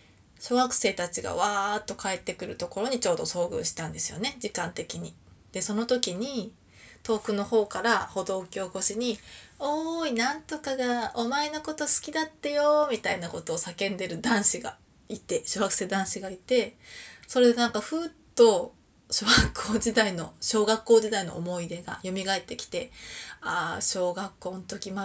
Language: Japanese